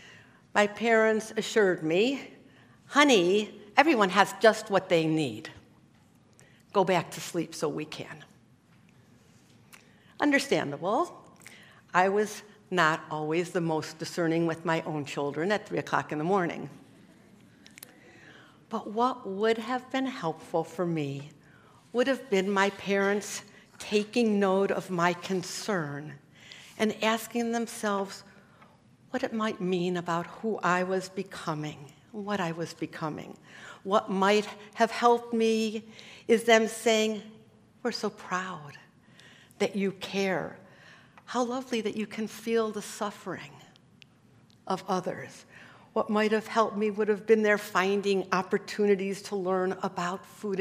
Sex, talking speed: female, 130 wpm